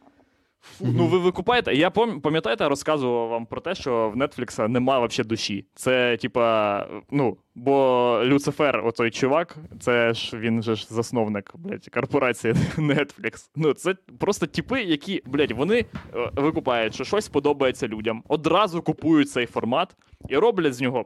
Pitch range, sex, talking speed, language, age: 115-160 Hz, male, 150 wpm, Ukrainian, 20-39